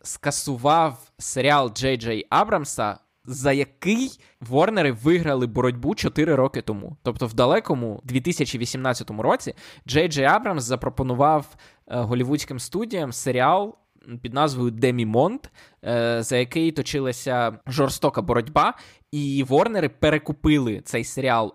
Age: 20-39